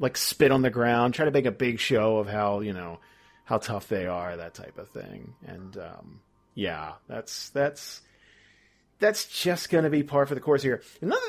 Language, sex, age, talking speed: English, male, 40-59, 200 wpm